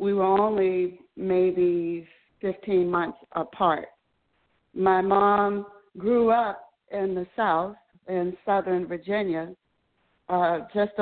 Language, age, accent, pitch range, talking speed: English, 60-79, American, 175-205 Hz, 105 wpm